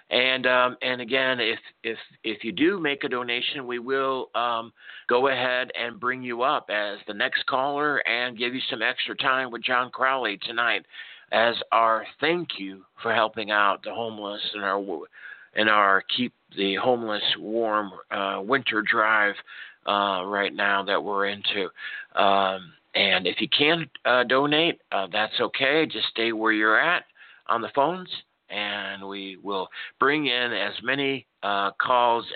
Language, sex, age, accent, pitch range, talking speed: English, male, 50-69, American, 110-135 Hz, 165 wpm